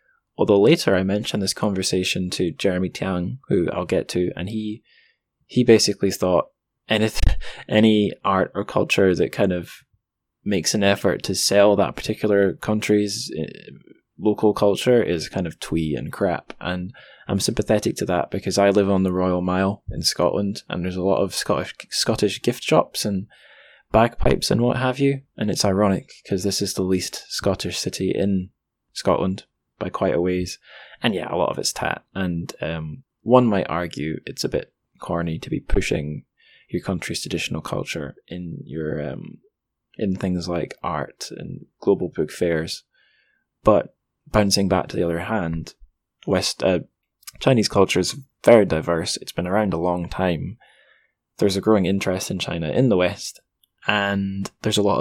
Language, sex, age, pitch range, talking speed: English, male, 10-29, 90-105 Hz, 170 wpm